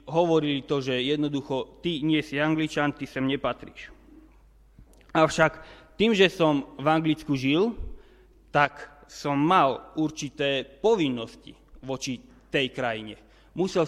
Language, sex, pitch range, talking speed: Slovak, male, 135-160 Hz, 115 wpm